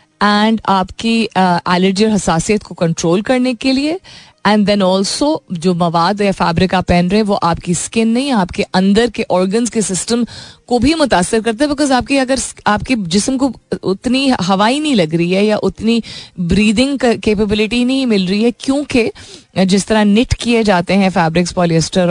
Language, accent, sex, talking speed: Hindi, native, female, 180 wpm